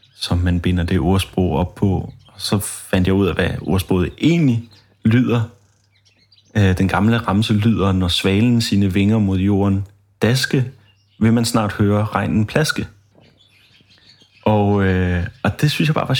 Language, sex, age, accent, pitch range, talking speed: Danish, male, 30-49, native, 95-115 Hz, 155 wpm